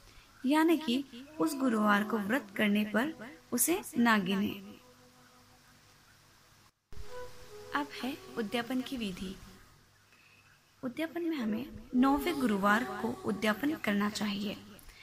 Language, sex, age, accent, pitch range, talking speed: Hindi, female, 20-39, native, 205-275 Hz, 90 wpm